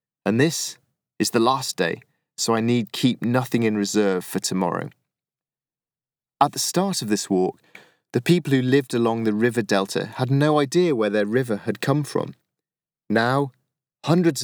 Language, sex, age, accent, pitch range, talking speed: English, male, 30-49, British, 105-130 Hz, 165 wpm